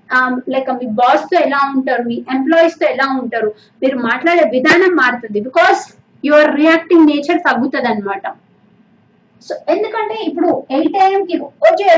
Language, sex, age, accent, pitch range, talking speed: Telugu, female, 20-39, native, 255-335 Hz, 120 wpm